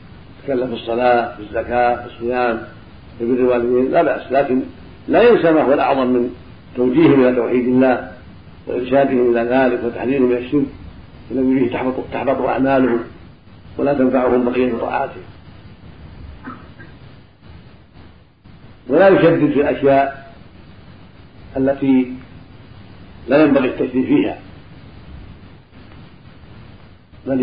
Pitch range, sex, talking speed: 100-130 Hz, male, 100 wpm